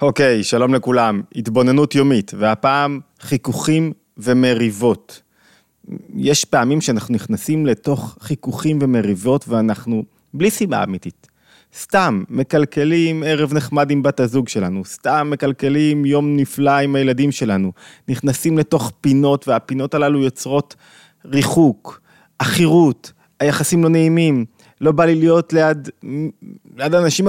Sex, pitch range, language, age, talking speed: male, 120-150 Hz, Hebrew, 30-49, 115 wpm